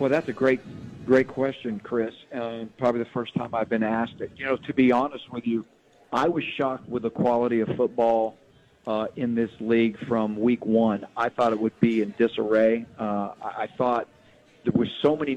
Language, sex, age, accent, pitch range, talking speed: English, male, 50-69, American, 115-130 Hz, 205 wpm